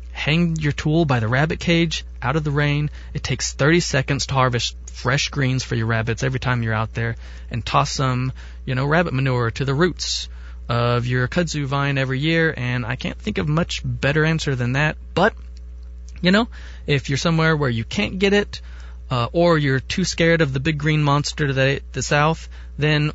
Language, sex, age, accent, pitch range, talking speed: English, male, 20-39, American, 115-160 Hz, 200 wpm